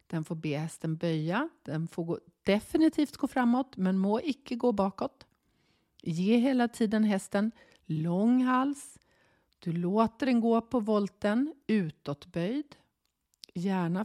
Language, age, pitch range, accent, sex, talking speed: Swedish, 40-59, 180-240 Hz, native, female, 125 wpm